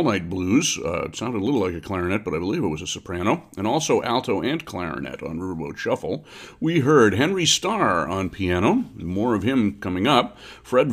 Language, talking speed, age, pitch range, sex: English, 205 wpm, 40-59, 95-115 Hz, male